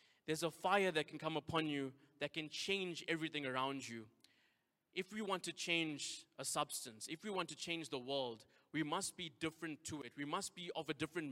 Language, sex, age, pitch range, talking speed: English, male, 20-39, 145-175 Hz, 210 wpm